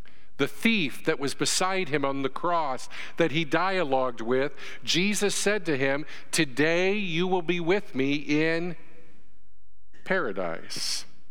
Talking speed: 135 wpm